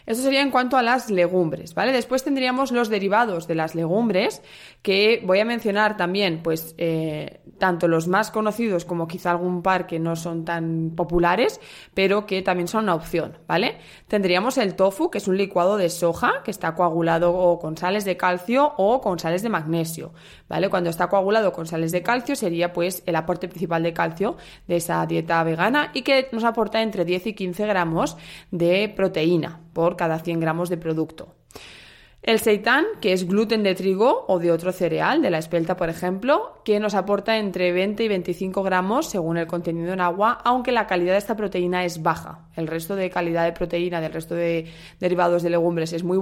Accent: Spanish